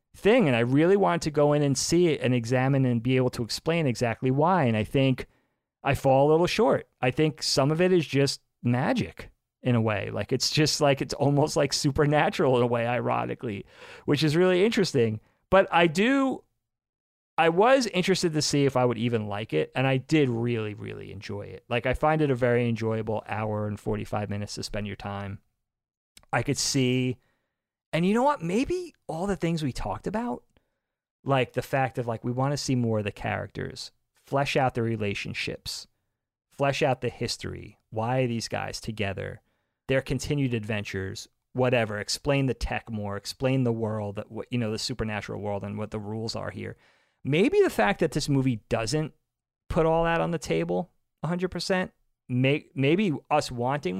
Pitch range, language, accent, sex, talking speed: 110-150 Hz, English, American, male, 190 wpm